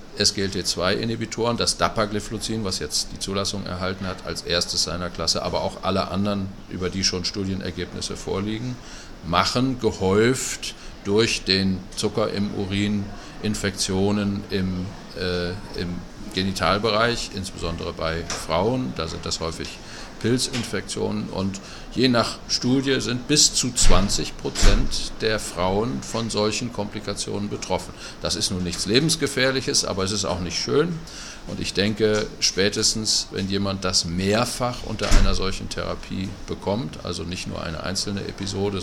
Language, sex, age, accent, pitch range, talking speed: German, male, 50-69, German, 90-105 Hz, 135 wpm